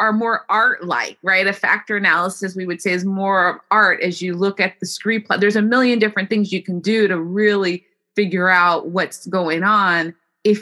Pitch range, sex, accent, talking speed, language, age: 175-210 Hz, female, American, 215 wpm, English, 20-39